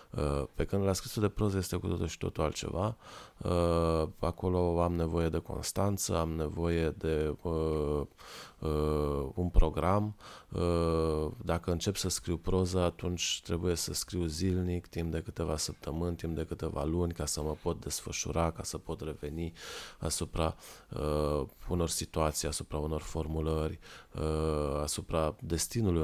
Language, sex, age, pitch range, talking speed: Romanian, male, 20-39, 80-90 Hz, 130 wpm